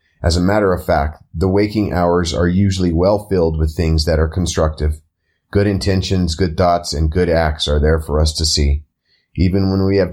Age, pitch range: 30-49, 80-95 Hz